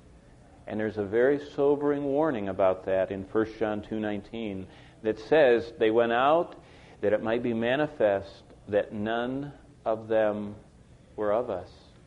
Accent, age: American, 50-69